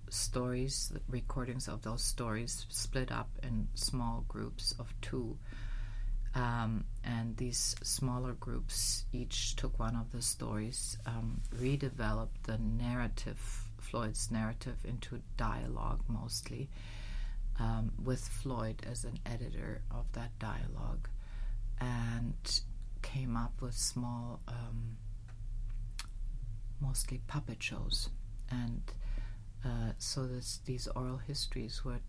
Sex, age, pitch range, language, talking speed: female, 40-59, 110-125 Hz, English, 110 wpm